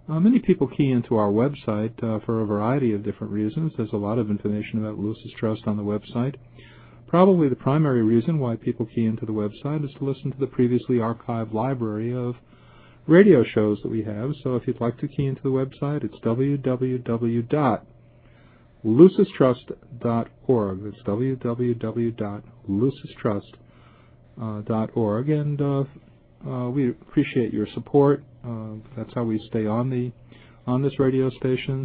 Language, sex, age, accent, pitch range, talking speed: English, male, 50-69, American, 110-130 Hz, 155 wpm